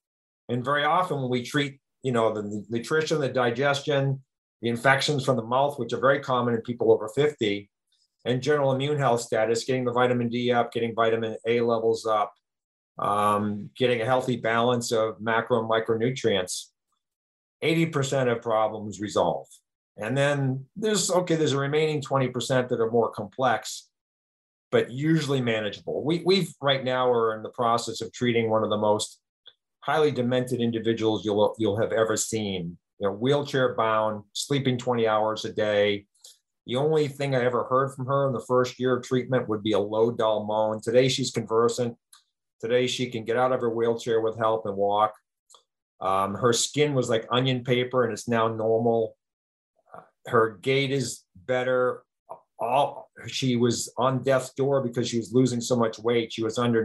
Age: 50-69